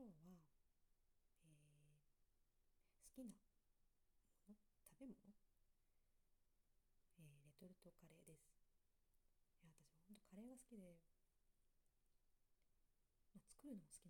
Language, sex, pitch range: Japanese, female, 140-180 Hz